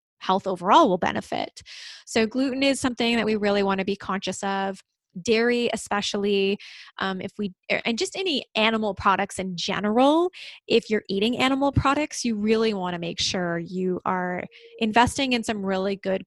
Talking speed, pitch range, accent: 170 wpm, 190-230 Hz, American